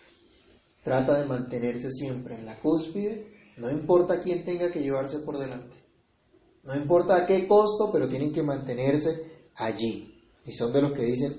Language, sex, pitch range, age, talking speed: Spanish, male, 125-170 Hz, 30-49, 165 wpm